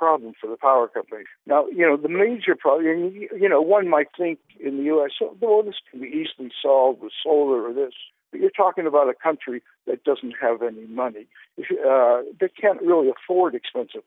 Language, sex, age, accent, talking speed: English, male, 60-79, American, 200 wpm